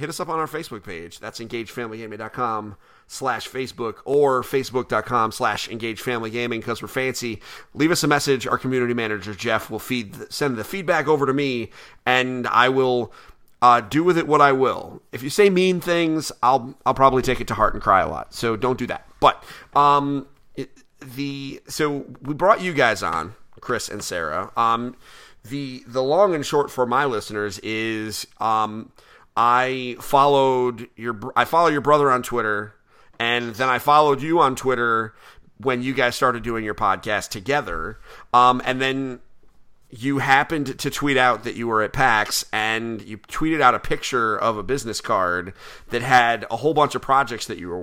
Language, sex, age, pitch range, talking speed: English, male, 30-49, 115-140 Hz, 185 wpm